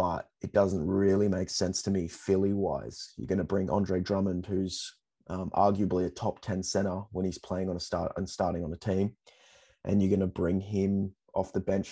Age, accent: 20-39, Australian